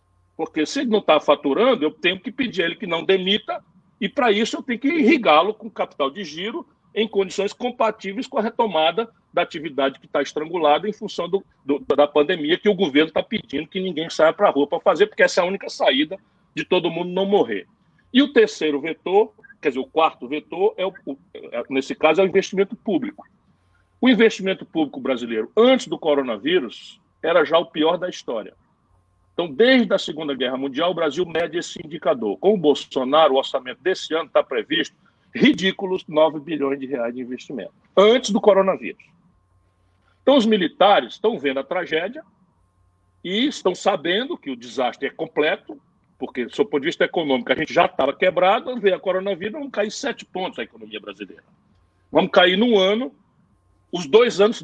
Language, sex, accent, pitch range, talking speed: Portuguese, male, Brazilian, 150-220 Hz, 180 wpm